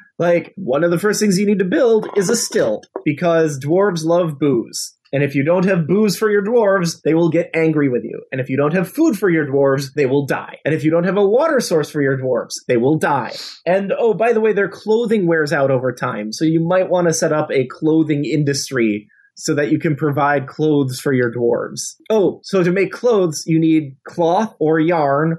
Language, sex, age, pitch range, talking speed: English, male, 30-49, 150-190 Hz, 230 wpm